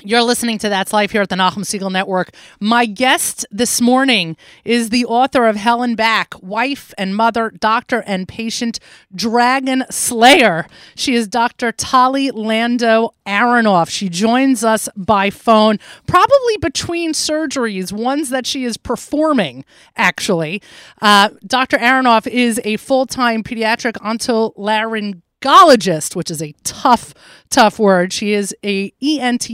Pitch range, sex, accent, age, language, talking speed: 195-245 Hz, female, American, 30-49, English, 140 wpm